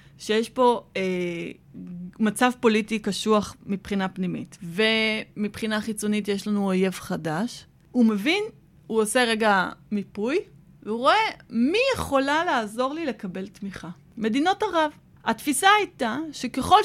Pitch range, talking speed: 210-290 Hz, 120 wpm